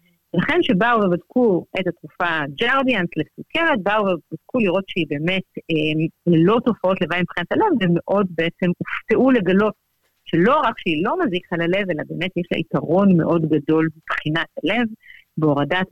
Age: 50-69